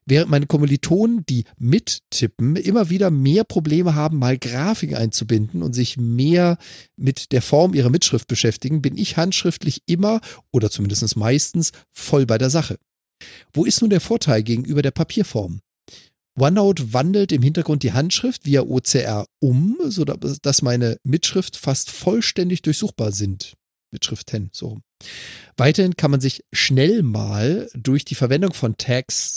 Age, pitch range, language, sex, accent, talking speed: 40-59, 125-175 Hz, German, male, German, 145 wpm